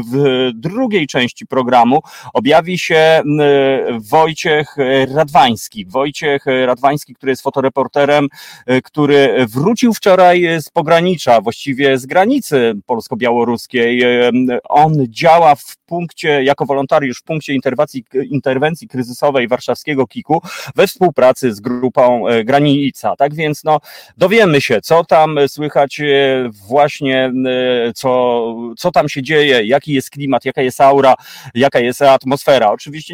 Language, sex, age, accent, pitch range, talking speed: Polish, male, 30-49, native, 125-150 Hz, 115 wpm